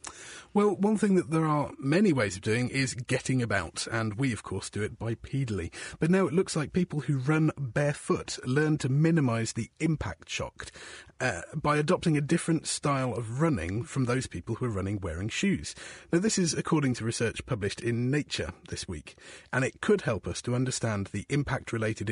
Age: 30-49